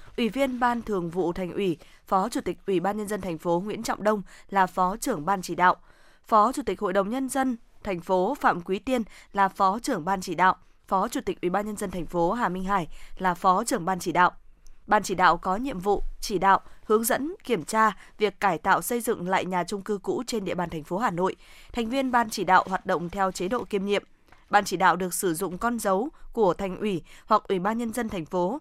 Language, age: Vietnamese, 20-39